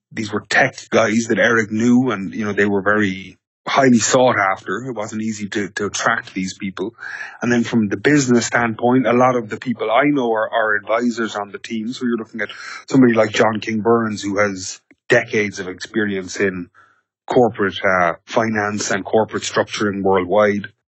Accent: Irish